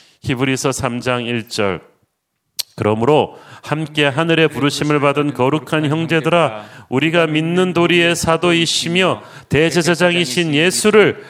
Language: Korean